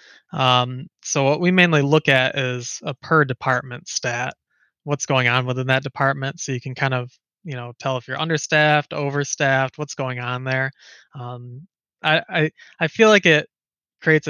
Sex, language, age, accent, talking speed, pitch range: male, English, 20-39, American, 175 wpm, 125-140 Hz